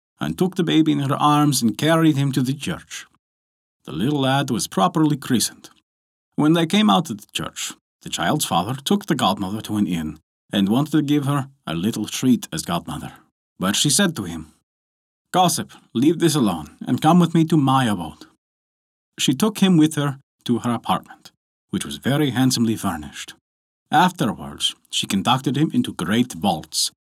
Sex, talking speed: male, 180 wpm